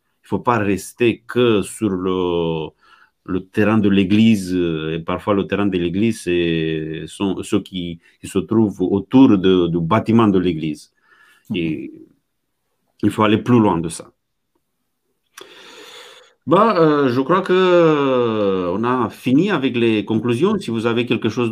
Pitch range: 95-125 Hz